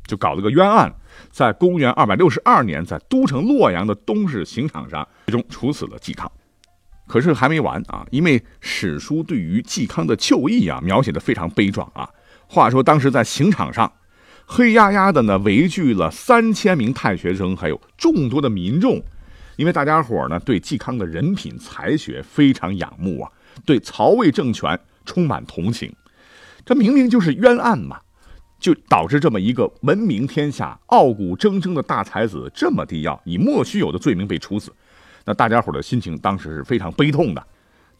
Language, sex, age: Chinese, male, 50-69